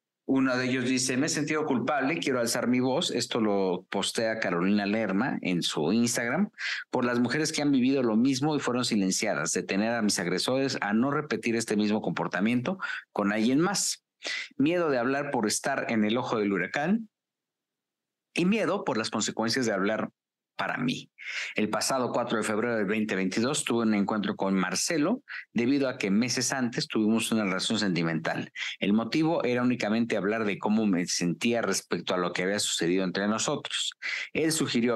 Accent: Mexican